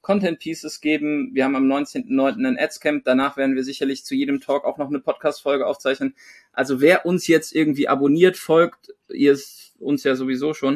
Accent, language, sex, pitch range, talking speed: German, German, male, 140-190 Hz, 185 wpm